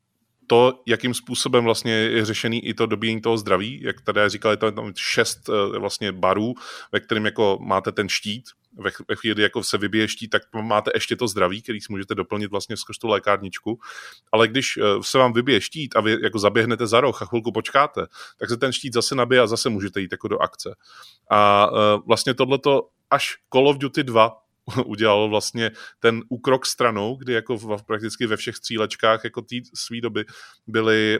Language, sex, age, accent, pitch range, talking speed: Czech, male, 20-39, native, 105-120 Hz, 190 wpm